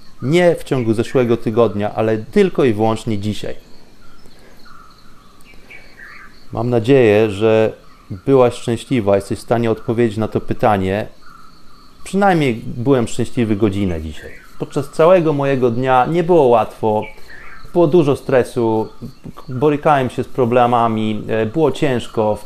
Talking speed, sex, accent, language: 120 wpm, male, native, Polish